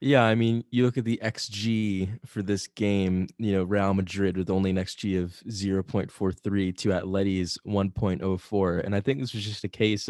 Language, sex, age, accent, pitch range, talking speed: English, male, 20-39, American, 90-105 Hz, 190 wpm